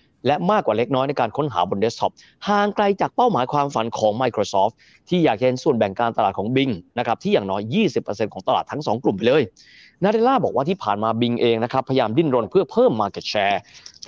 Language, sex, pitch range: Thai, male, 115-195 Hz